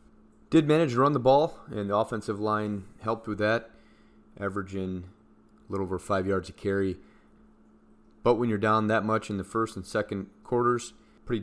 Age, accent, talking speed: 30-49, American, 180 wpm